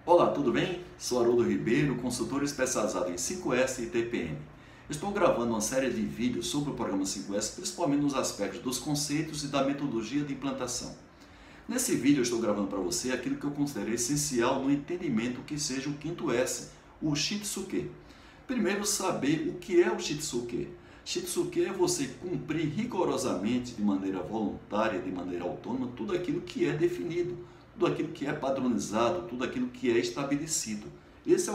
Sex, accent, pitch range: male, Brazilian, 120-180 Hz